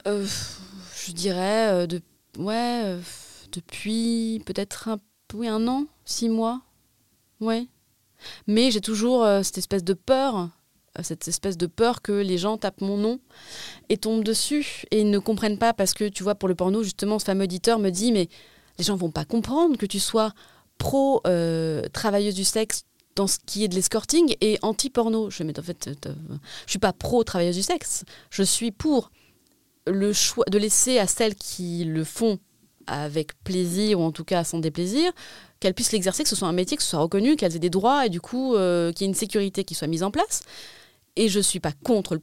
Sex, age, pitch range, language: female, 30-49, 185-235 Hz, French